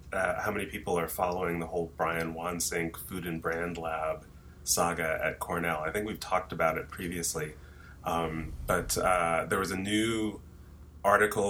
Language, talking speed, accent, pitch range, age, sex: English, 160 wpm, American, 85-95 Hz, 30-49, male